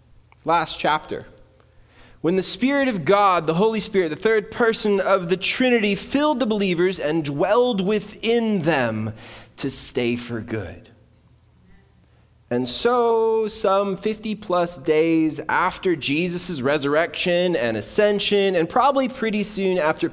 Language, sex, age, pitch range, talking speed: English, male, 20-39, 135-210 Hz, 130 wpm